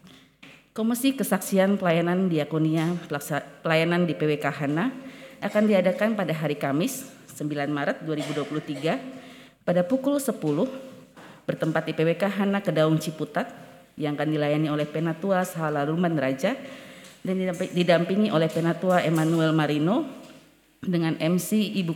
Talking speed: 110 wpm